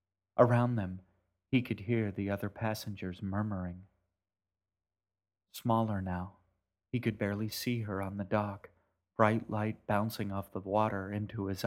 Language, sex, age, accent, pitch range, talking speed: English, male, 40-59, American, 95-110 Hz, 140 wpm